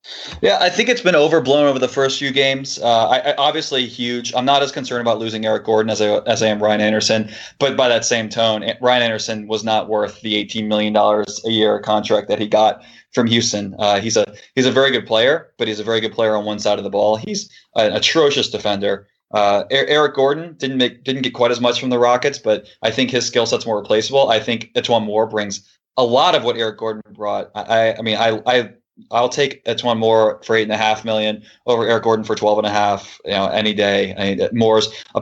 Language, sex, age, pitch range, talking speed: English, male, 20-39, 105-125 Hz, 245 wpm